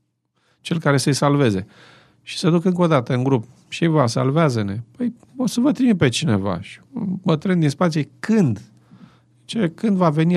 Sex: male